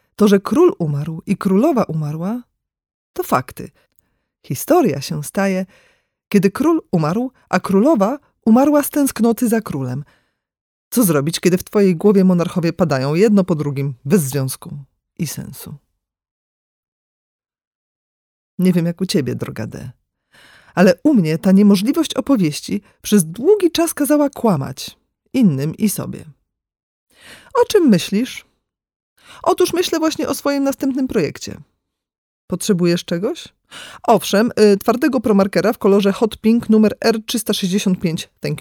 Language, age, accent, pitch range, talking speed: Polish, 40-59, native, 170-235 Hz, 125 wpm